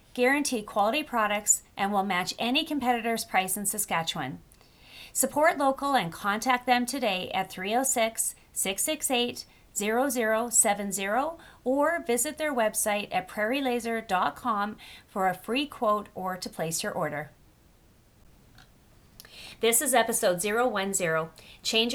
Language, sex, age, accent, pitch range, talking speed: English, female, 40-59, American, 185-245 Hz, 105 wpm